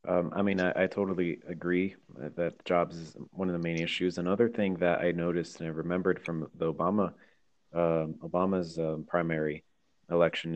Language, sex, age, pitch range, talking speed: English, male, 30-49, 85-95 Hz, 175 wpm